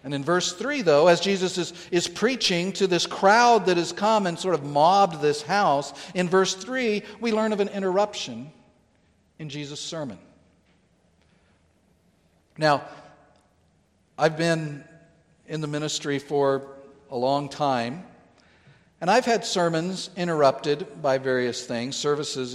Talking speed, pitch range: 140 wpm, 130-185 Hz